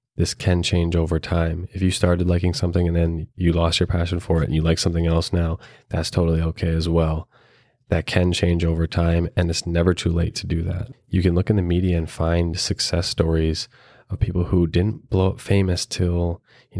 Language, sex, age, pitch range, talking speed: English, male, 20-39, 85-100 Hz, 220 wpm